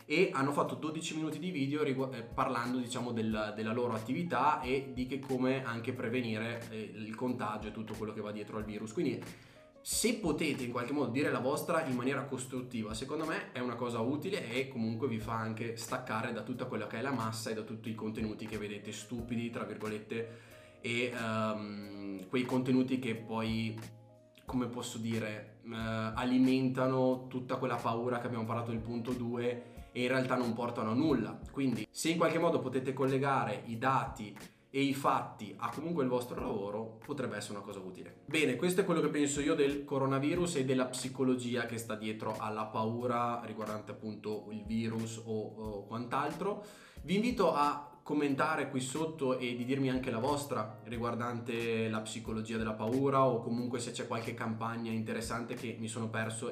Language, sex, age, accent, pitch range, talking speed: Italian, male, 20-39, native, 110-130 Hz, 185 wpm